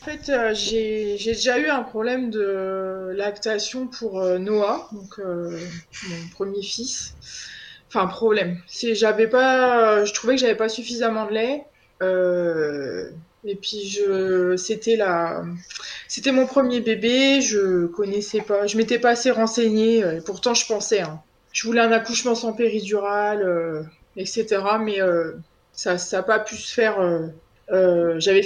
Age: 20-39